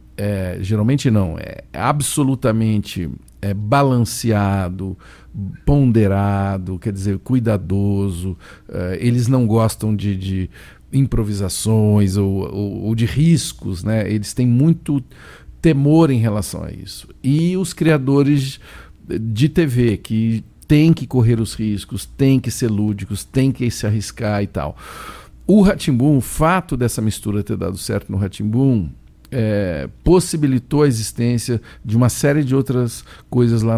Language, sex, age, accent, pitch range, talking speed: Portuguese, male, 50-69, Brazilian, 100-135 Hz, 135 wpm